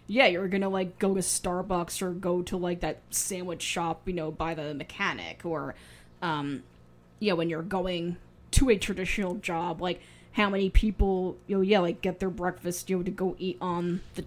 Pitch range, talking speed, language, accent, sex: 175-205 Hz, 200 wpm, English, American, female